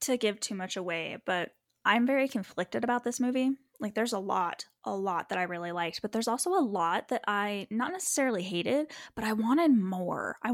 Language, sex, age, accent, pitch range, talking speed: English, female, 10-29, American, 190-245 Hz, 210 wpm